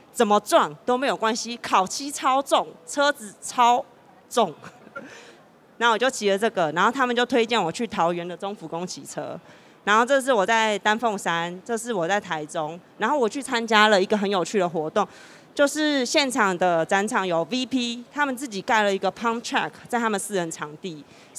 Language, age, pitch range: Chinese, 20-39, 185-245 Hz